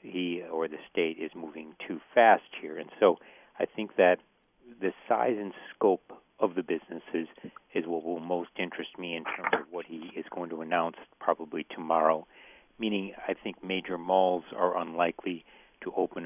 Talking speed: 175 wpm